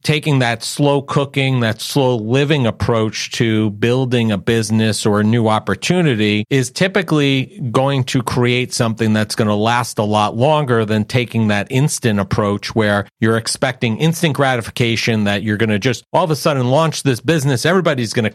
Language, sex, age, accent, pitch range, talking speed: English, male, 40-59, American, 105-130 Hz, 175 wpm